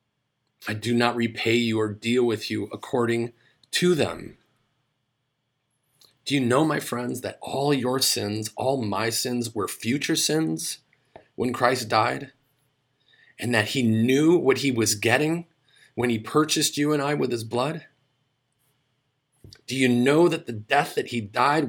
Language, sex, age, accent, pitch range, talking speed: English, male, 30-49, American, 110-140 Hz, 155 wpm